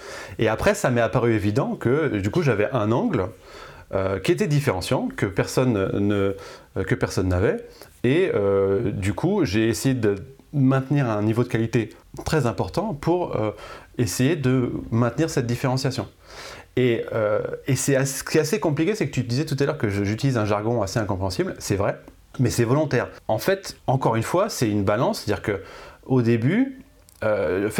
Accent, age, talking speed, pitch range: French, 30-49, 175 wpm, 110-135 Hz